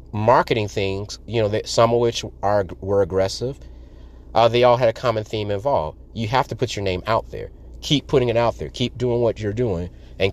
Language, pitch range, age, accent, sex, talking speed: English, 85-115 Hz, 30-49, American, male, 220 wpm